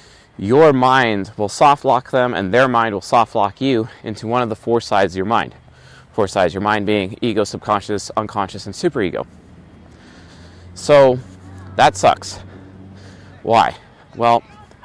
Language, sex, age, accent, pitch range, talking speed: English, male, 30-49, American, 95-125 Hz, 150 wpm